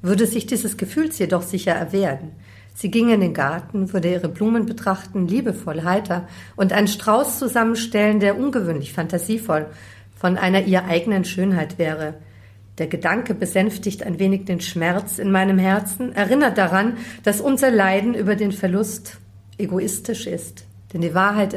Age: 50-69